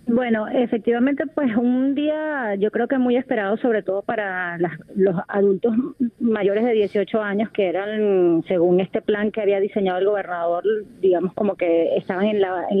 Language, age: Spanish, 30-49